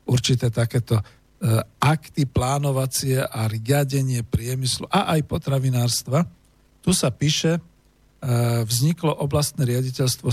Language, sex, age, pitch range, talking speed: Slovak, male, 50-69, 115-145 Hz, 105 wpm